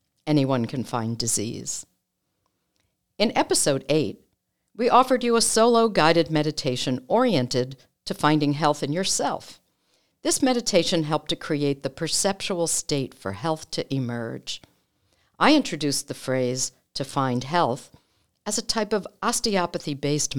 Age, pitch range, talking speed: 60-79, 135-185 Hz, 130 wpm